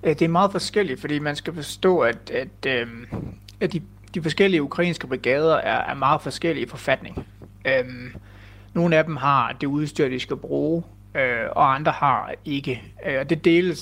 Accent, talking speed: native, 150 wpm